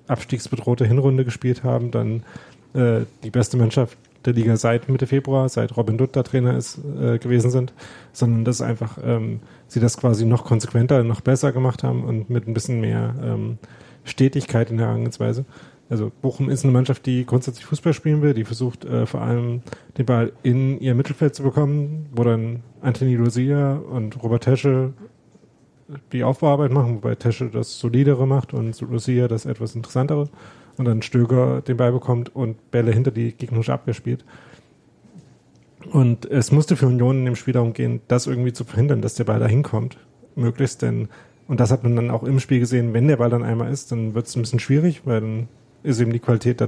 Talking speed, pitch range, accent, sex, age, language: 190 wpm, 115-130 Hz, German, male, 30-49, German